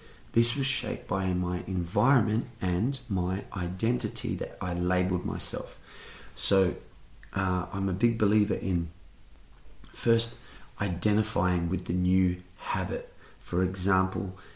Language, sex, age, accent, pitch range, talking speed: English, male, 30-49, Australian, 90-105 Hz, 115 wpm